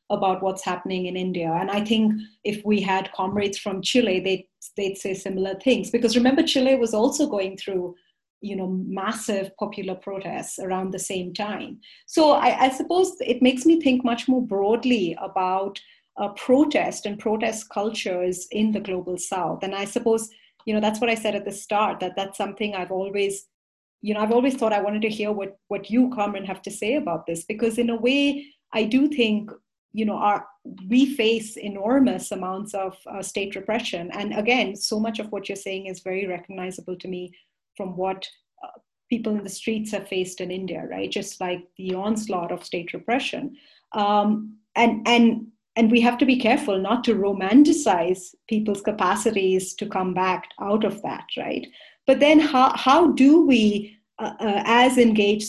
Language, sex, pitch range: English, female, 190-230 Hz